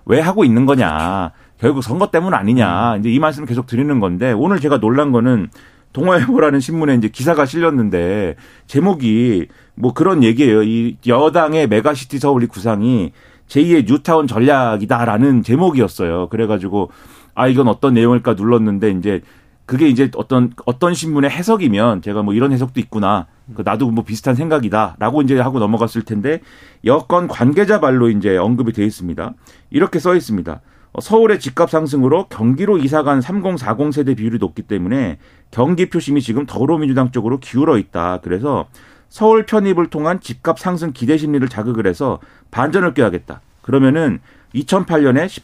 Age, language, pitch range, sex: 40-59, Korean, 115-155 Hz, male